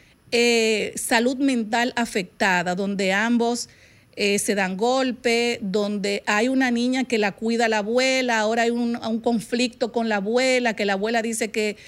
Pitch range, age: 205-250 Hz, 50-69